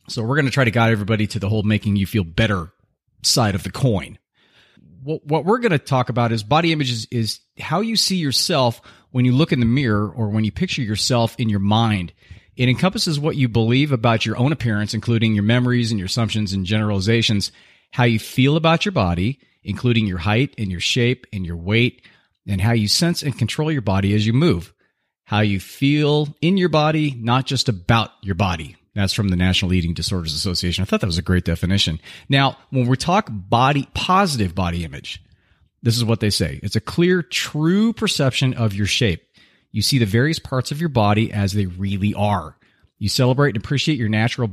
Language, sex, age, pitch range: English, male, 30-49, 100-130 Hz